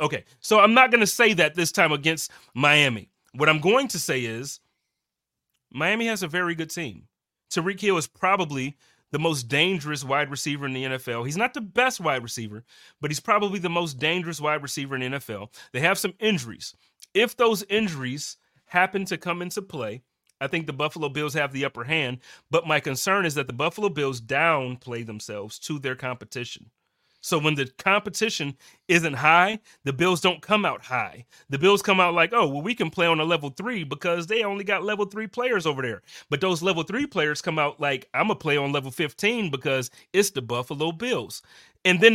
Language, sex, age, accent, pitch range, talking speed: English, male, 30-49, American, 135-185 Hz, 205 wpm